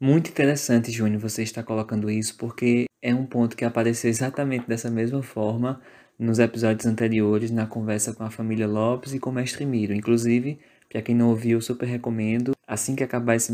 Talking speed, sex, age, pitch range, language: 190 wpm, male, 20-39, 110-130 Hz, Portuguese